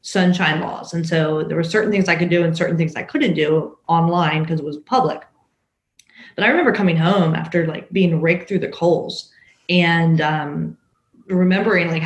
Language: English